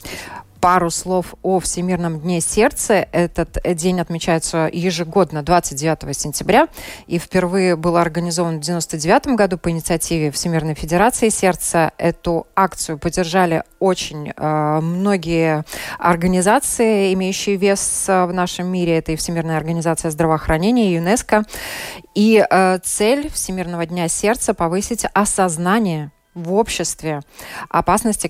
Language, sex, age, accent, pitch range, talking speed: Russian, female, 20-39, native, 165-195 Hz, 115 wpm